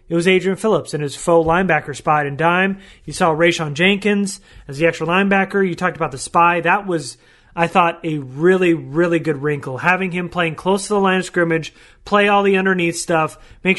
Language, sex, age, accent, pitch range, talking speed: English, male, 30-49, American, 160-190 Hz, 210 wpm